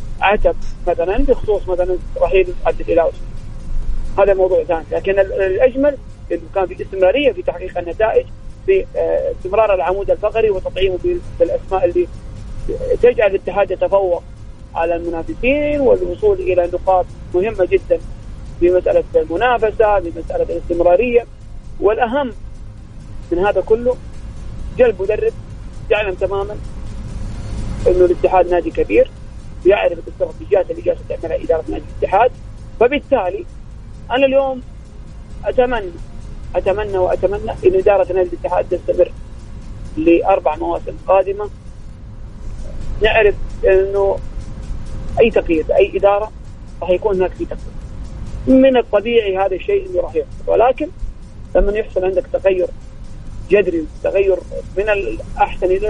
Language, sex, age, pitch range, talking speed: Arabic, male, 40-59, 175-265 Hz, 110 wpm